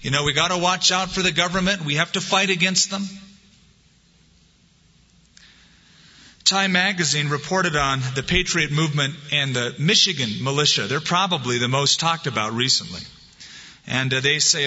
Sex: male